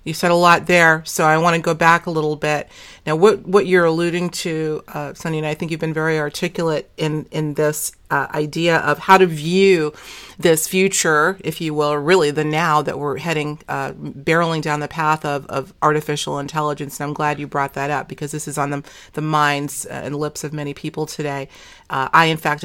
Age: 40-59